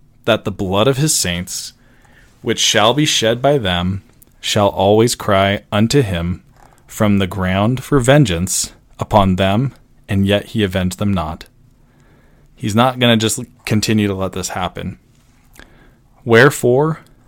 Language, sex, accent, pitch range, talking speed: English, male, American, 100-130 Hz, 140 wpm